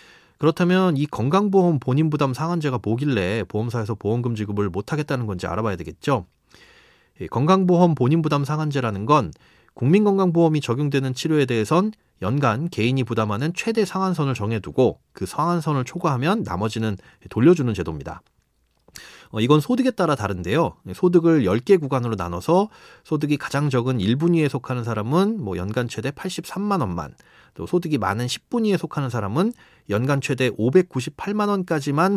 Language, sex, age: Korean, male, 30-49